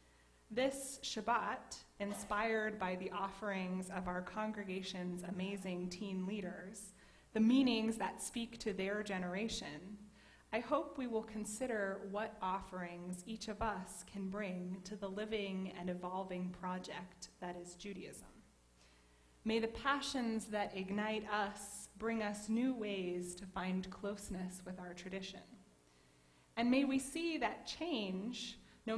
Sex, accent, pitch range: female, American, 185-225 Hz